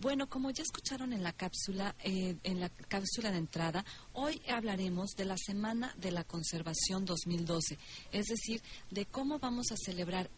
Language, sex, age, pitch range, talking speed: Spanish, female, 40-59, 180-215 Hz, 170 wpm